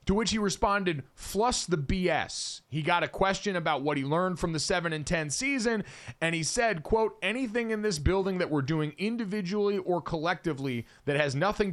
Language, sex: English, male